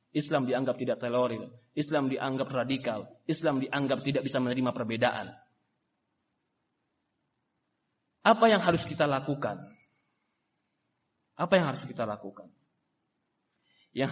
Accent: native